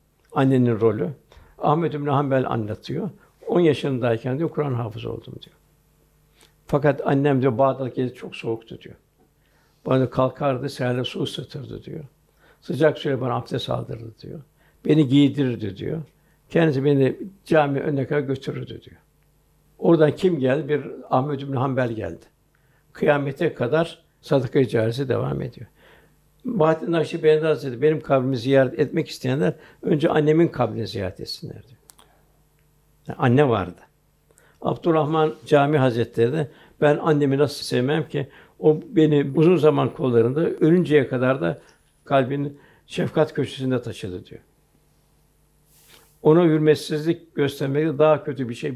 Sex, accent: male, native